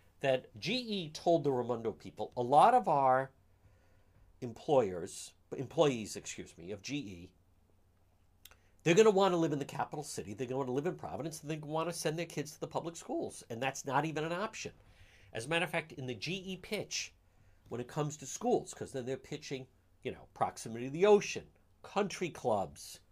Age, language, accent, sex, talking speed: 50-69, English, American, male, 195 wpm